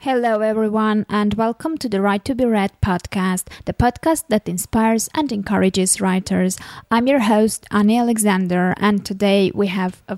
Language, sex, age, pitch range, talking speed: English, female, 20-39, 190-225 Hz, 165 wpm